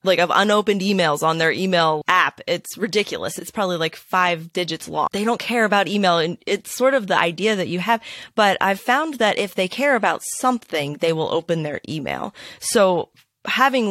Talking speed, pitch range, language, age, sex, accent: 200 wpm, 170-210 Hz, English, 20-39, female, American